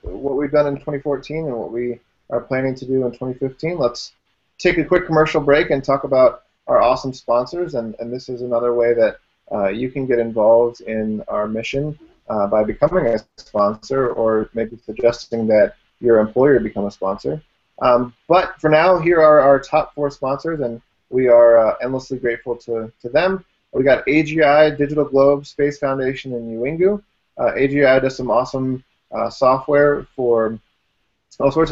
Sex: male